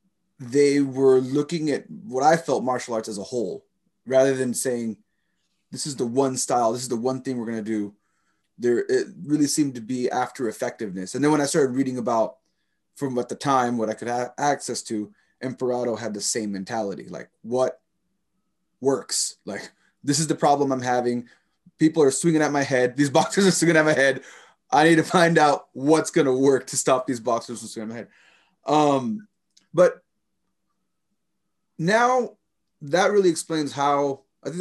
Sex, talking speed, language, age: male, 185 wpm, English, 20-39